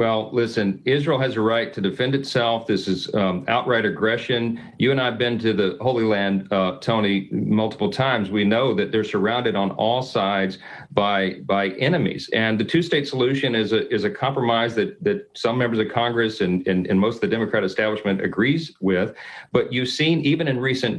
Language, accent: English, American